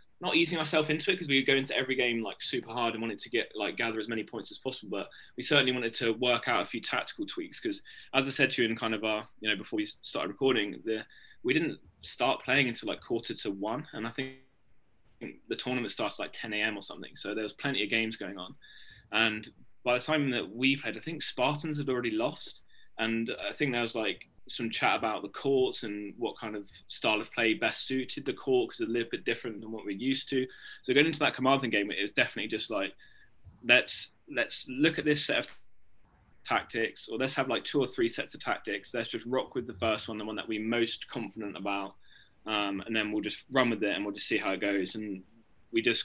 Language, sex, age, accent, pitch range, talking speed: English, male, 20-39, British, 110-135 Hz, 245 wpm